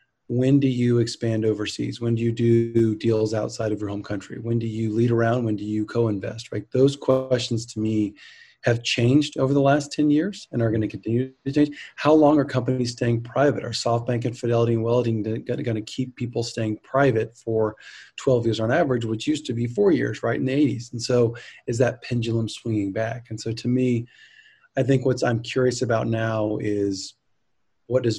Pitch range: 110-130 Hz